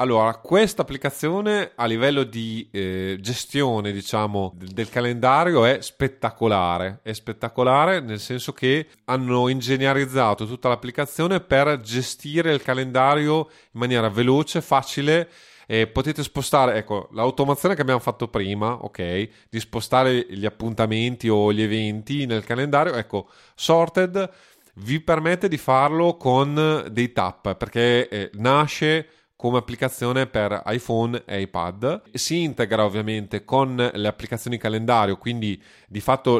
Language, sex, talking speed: Italian, male, 125 wpm